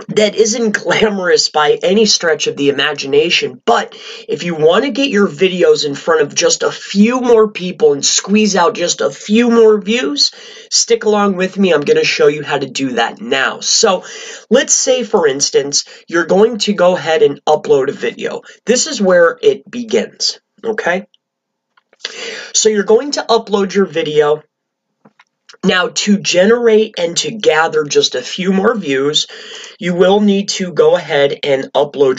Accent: American